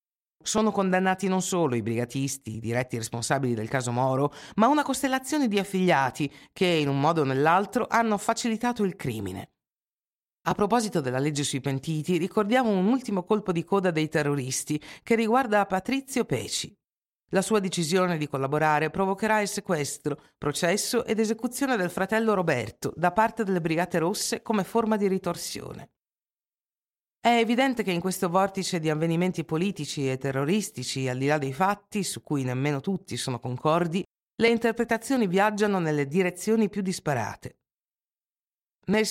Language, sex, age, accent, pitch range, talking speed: Italian, female, 50-69, native, 145-215 Hz, 150 wpm